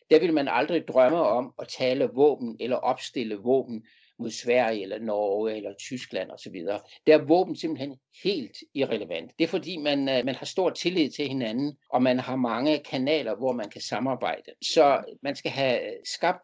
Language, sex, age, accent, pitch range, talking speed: Danish, male, 60-79, native, 125-165 Hz, 180 wpm